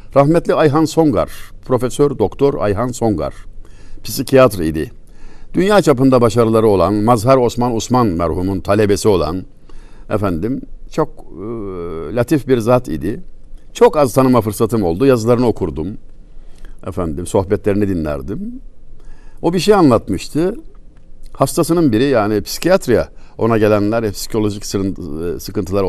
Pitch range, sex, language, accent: 105-135 Hz, male, Turkish, native